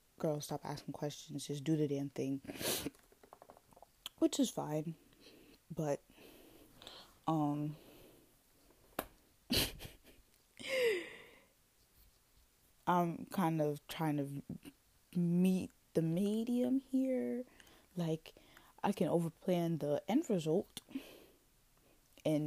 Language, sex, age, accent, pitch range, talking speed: English, female, 20-39, American, 150-235 Hz, 85 wpm